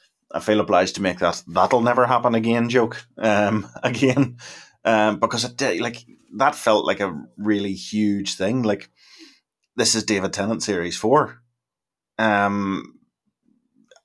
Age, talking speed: 20-39, 140 wpm